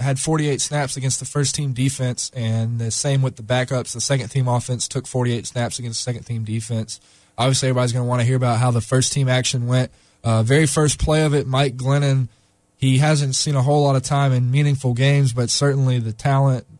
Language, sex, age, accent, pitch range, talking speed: English, male, 20-39, American, 120-135 Hz, 210 wpm